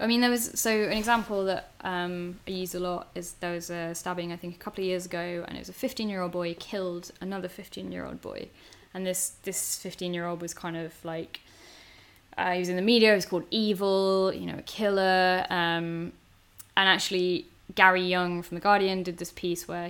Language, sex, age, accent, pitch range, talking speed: English, female, 10-29, British, 170-195 Hz, 210 wpm